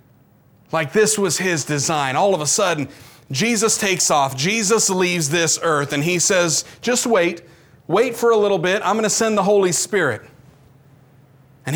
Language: English